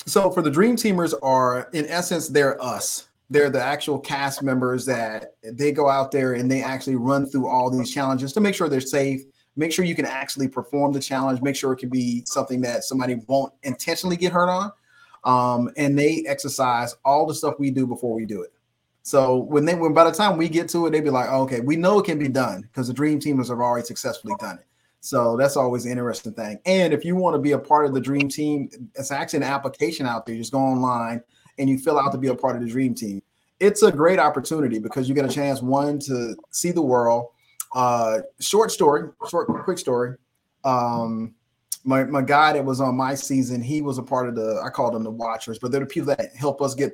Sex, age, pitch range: male, 30-49, 125-150 Hz